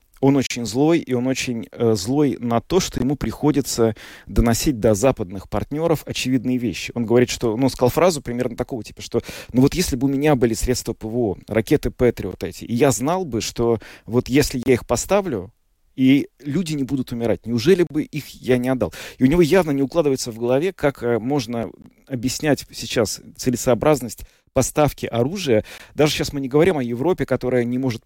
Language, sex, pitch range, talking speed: Russian, male, 110-140 Hz, 190 wpm